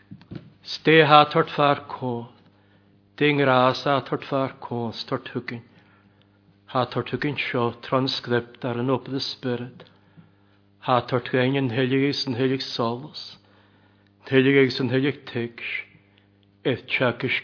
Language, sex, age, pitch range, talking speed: English, male, 60-79, 100-130 Hz, 105 wpm